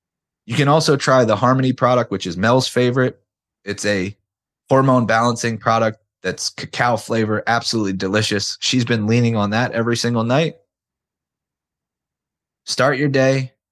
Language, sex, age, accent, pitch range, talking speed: English, male, 30-49, American, 100-120 Hz, 140 wpm